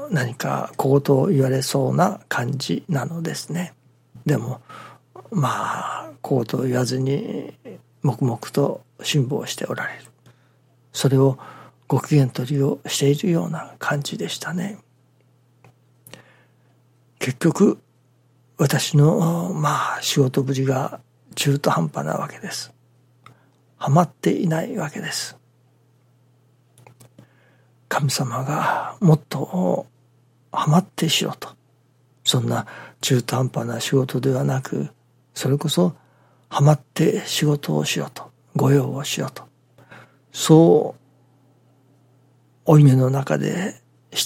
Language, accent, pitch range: Japanese, native, 125-145 Hz